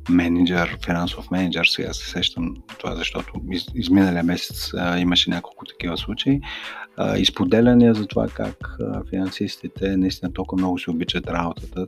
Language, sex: Bulgarian, male